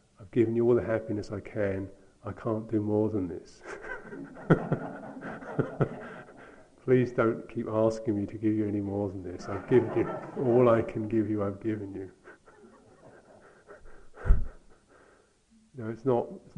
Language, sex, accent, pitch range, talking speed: English, male, British, 105-130 Hz, 150 wpm